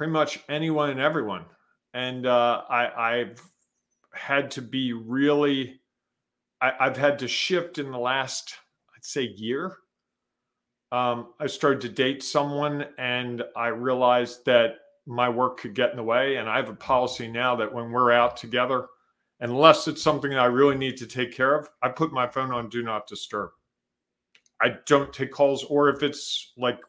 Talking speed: 170 wpm